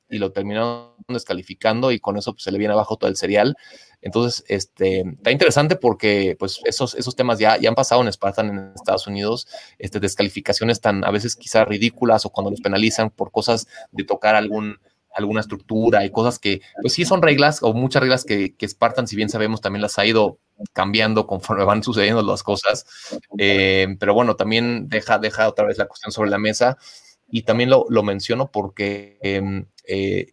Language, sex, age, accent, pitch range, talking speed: Spanish, male, 30-49, Mexican, 100-120 Hz, 195 wpm